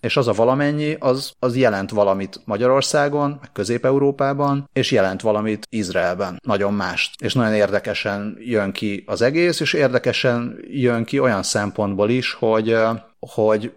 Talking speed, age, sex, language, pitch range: 145 wpm, 30-49, male, Hungarian, 100-135 Hz